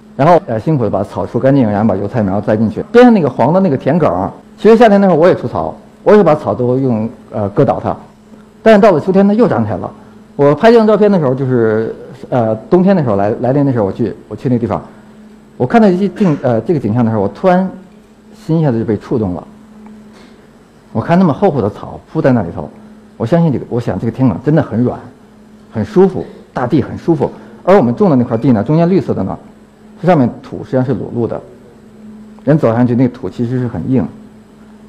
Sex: male